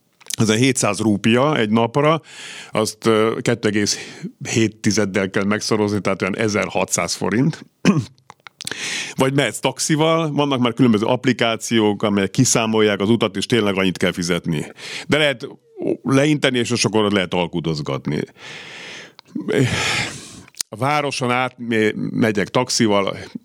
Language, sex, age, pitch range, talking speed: Hungarian, male, 50-69, 105-135 Hz, 110 wpm